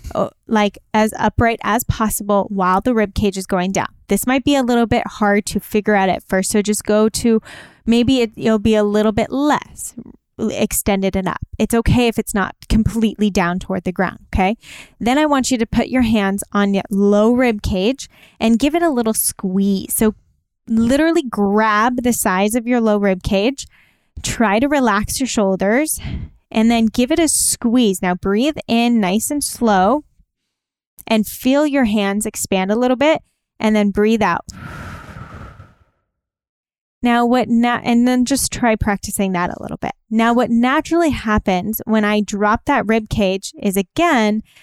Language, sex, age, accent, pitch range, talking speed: English, female, 10-29, American, 205-240 Hz, 175 wpm